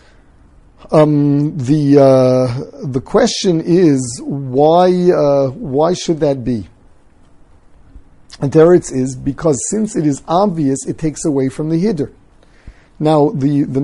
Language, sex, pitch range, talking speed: English, male, 135-175 Hz, 130 wpm